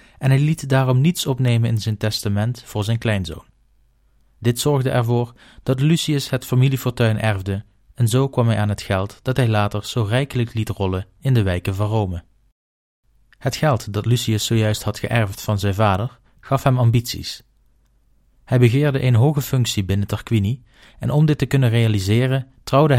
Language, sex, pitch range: Dutch, male, 105-130 Hz